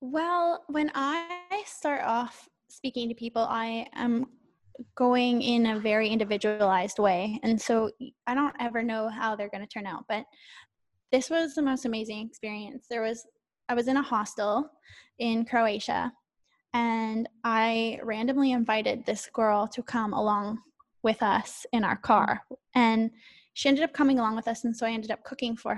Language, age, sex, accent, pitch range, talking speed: English, 10-29, female, American, 220-255 Hz, 170 wpm